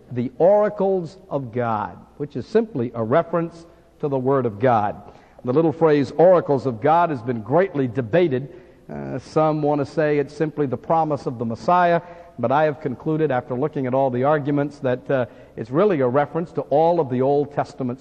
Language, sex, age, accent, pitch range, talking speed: English, male, 60-79, American, 125-165 Hz, 195 wpm